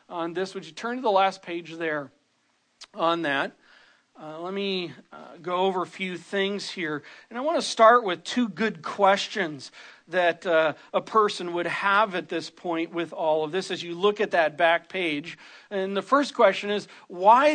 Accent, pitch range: American, 165-215 Hz